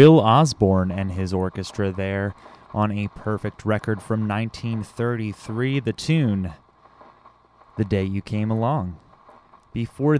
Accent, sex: American, male